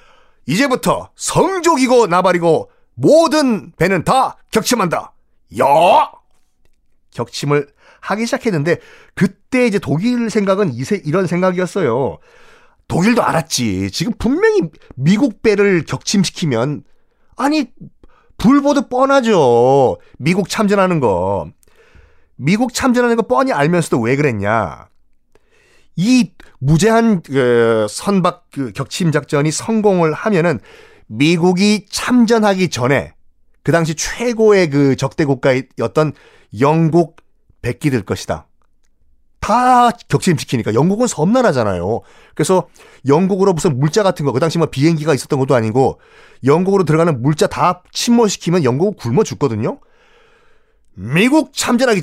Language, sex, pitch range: Korean, male, 140-220 Hz